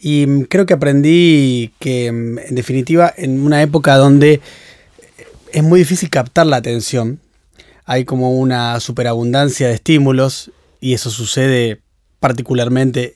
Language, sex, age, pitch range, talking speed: Spanish, male, 20-39, 125-155 Hz, 125 wpm